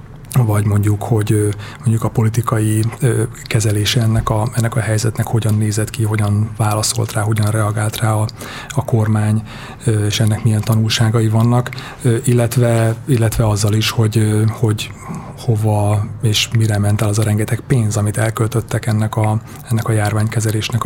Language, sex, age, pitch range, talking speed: Hungarian, male, 30-49, 105-120 Hz, 140 wpm